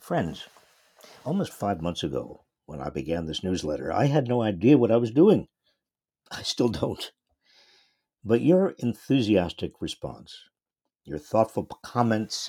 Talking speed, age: 135 wpm, 60-79